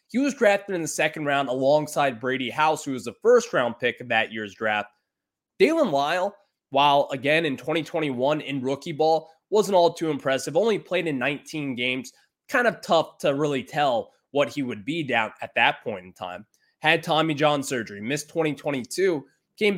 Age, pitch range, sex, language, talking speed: 20-39, 140-185 Hz, male, English, 180 wpm